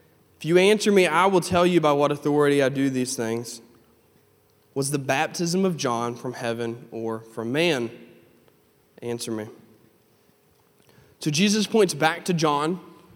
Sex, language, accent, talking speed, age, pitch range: male, English, American, 150 wpm, 20-39, 130-170 Hz